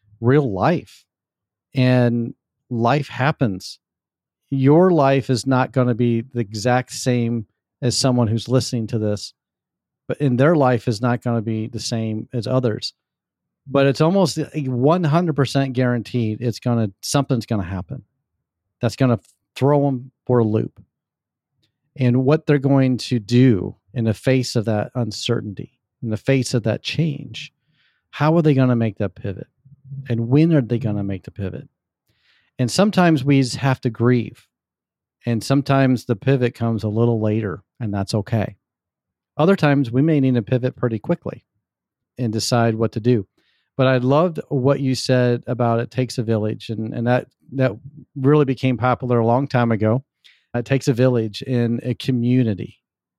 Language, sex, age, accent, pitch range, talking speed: English, male, 40-59, American, 115-135 Hz, 170 wpm